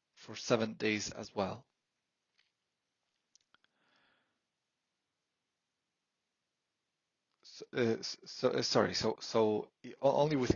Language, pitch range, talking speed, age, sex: English, 105-130 Hz, 80 wpm, 30-49, male